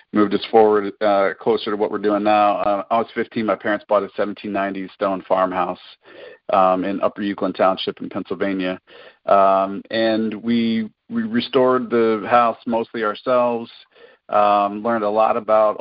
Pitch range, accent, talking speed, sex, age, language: 100-110 Hz, American, 160 wpm, male, 40-59, English